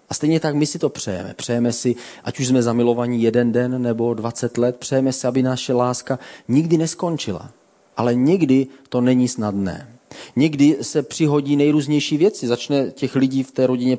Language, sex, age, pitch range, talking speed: Czech, male, 30-49, 110-135 Hz, 175 wpm